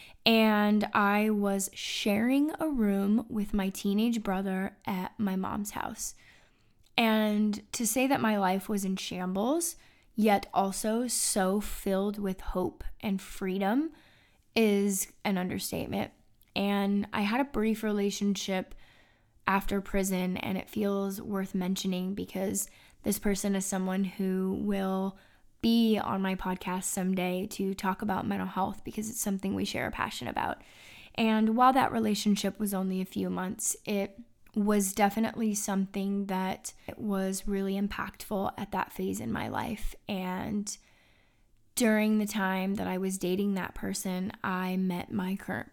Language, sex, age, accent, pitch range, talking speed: English, female, 20-39, American, 190-215 Hz, 145 wpm